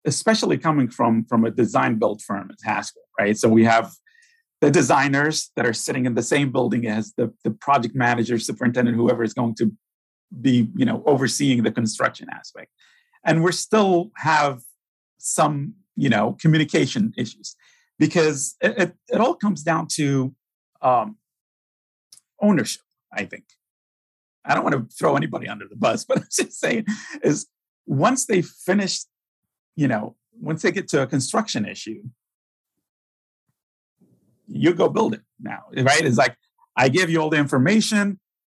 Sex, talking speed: male, 155 wpm